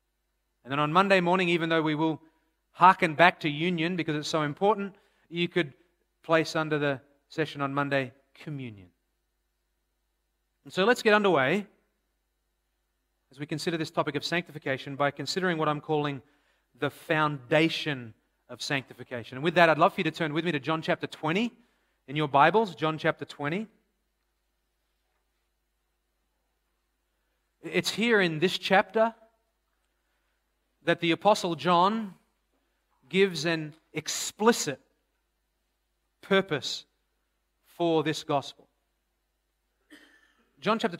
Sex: male